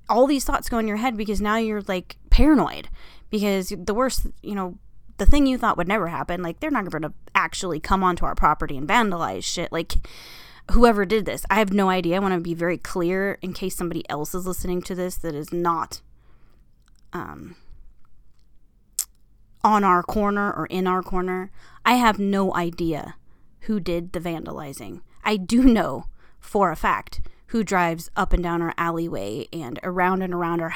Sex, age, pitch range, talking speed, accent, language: female, 20-39, 175-220 Hz, 185 wpm, American, English